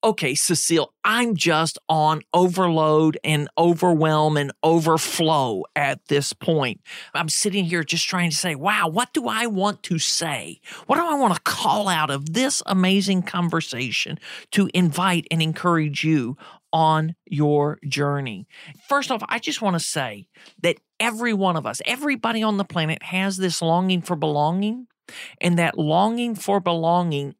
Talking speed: 160 wpm